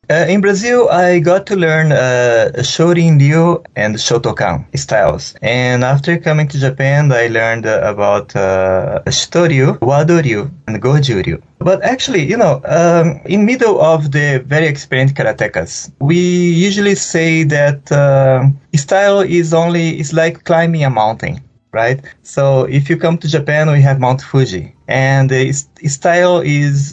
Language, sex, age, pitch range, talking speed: English, male, 20-39, 125-165 Hz, 145 wpm